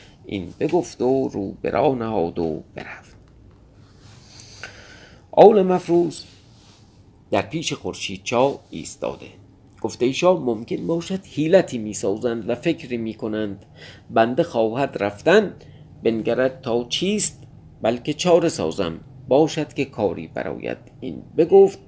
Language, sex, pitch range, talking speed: Persian, male, 105-160 Hz, 110 wpm